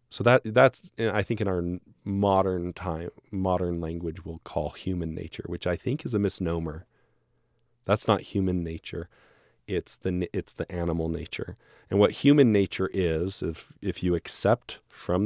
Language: English